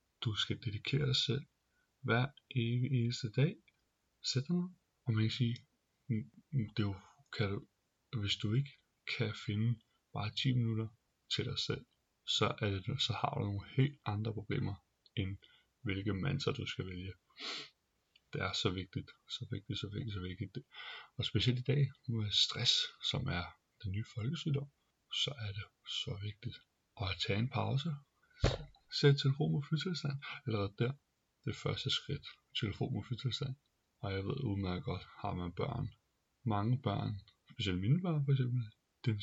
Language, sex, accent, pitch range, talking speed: Danish, male, native, 105-140 Hz, 160 wpm